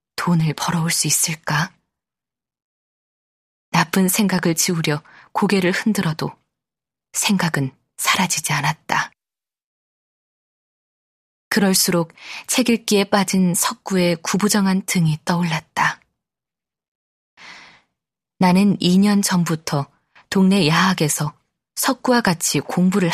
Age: 20-39